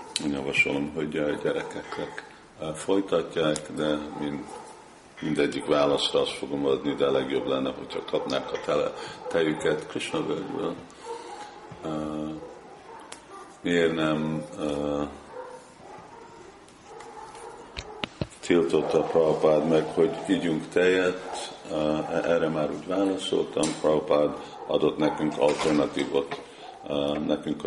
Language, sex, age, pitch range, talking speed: Hungarian, male, 50-69, 75-100 Hz, 85 wpm